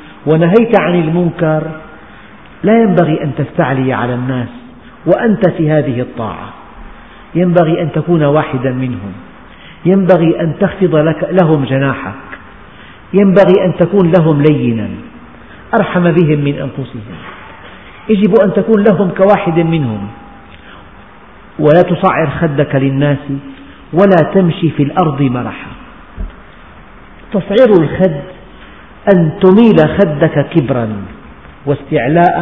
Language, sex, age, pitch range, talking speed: Arabic, male, 50-69, 135-180 Hz, 100 wpm